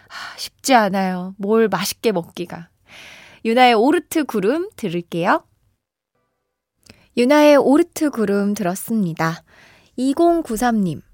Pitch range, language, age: 185-250 Hz, Korean, 20-39